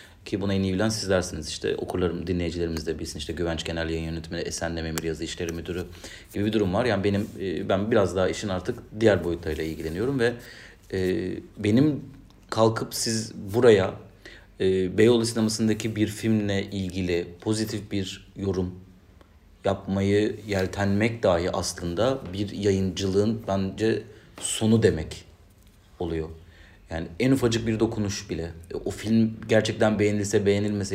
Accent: native